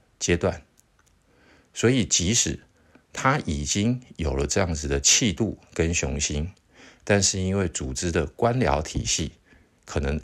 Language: Chinese